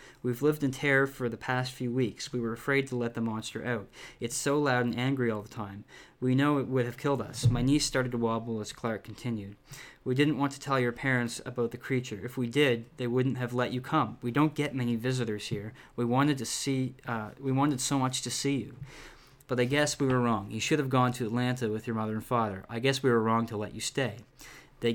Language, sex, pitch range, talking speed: English, male, 115-135 Hz, 245 wpm